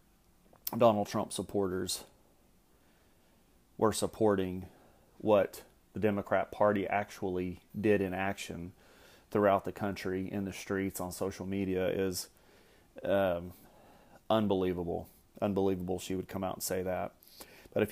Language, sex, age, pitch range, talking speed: English, male, 30-49, 95-105 Hz, 115 wpm